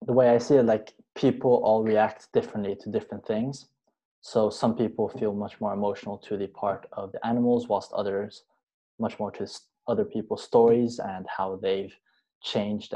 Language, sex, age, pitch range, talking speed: English, male, 20-39, 100-120 Hz, 175 wpm